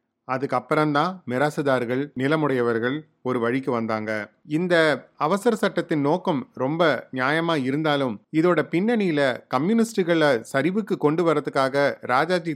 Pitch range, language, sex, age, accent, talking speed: 125-165 Hz, Tamil, male, 30-49, native, 95 wpm